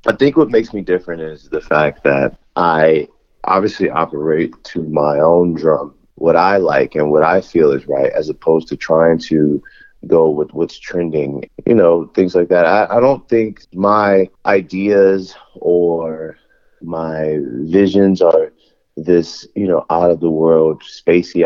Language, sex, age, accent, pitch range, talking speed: English, male, 30-49, American, 80-95 Hz, 160 wpm